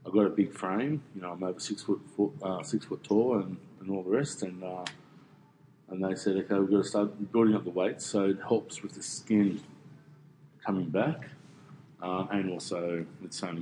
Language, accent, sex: English, Australian, male